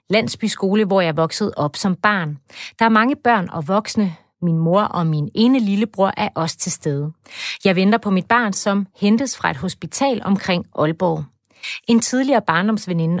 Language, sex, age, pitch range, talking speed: Danish, female, 30-49, 170-225 Hz, 180 wpm